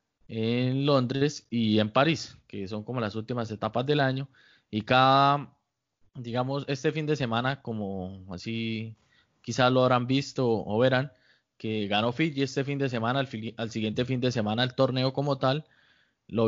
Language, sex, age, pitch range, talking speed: Spanish, male, 20-39, 110-130 Hz, 170 wpm